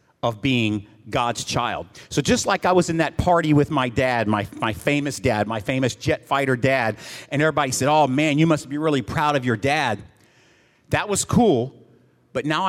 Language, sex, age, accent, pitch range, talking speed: English, male, 40-59, American, 110-150 Hz, 200 wpm